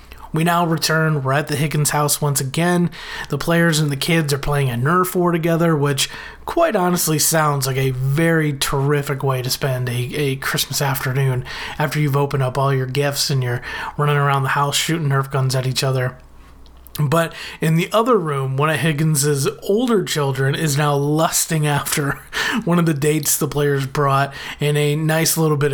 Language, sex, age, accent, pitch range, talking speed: English, male, 30-49, American, 135-170 Hz, 190 wpm